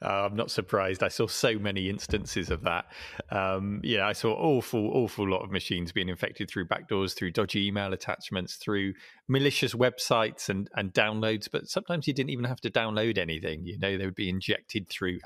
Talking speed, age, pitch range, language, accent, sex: 195 wpm, 30-49, 95-120 Hz, English, British, male